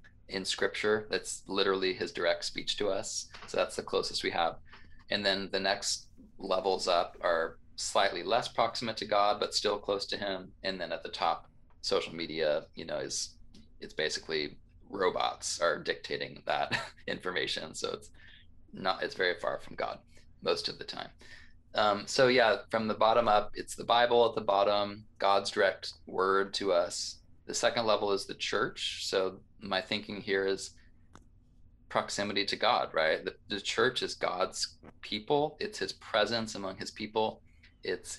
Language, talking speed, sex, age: English, 170 wpm, male, 20-39